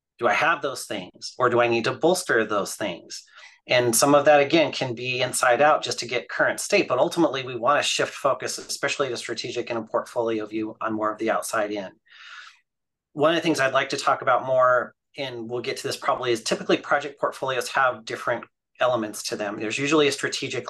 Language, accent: English, American